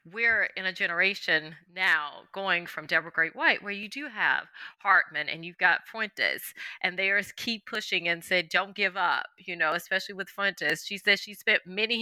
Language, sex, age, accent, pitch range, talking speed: English, female, 30-49, American, 165-205 Hz, 195 wpm